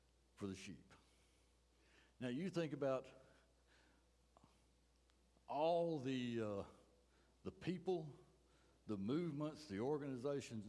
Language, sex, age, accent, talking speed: English, male, 60-79, American, 90 wpm